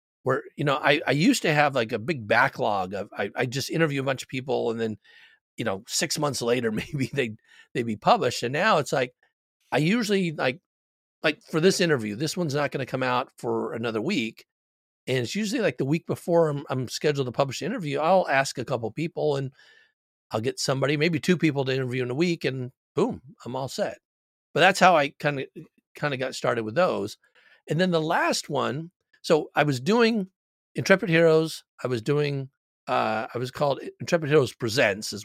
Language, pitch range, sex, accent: English, 115-160 Hz, male, American